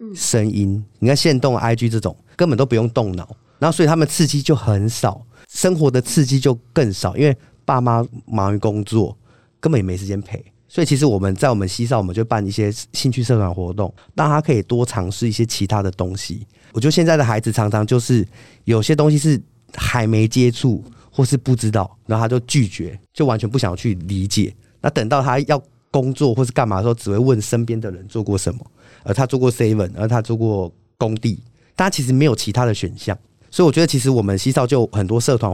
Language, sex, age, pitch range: Chinese, male, 30-49, 105-130 Hz